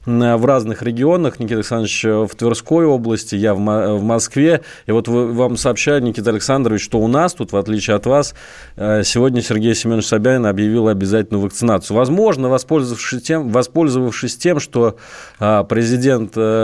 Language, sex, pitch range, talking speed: Russian, male, 105-130 Hz, 135 wpm